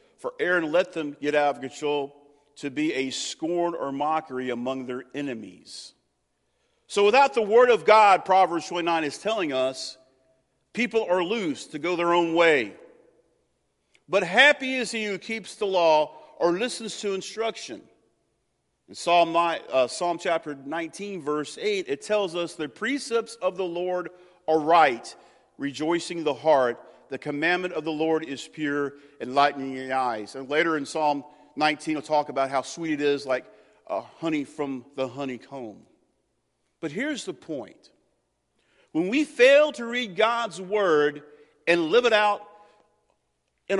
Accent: American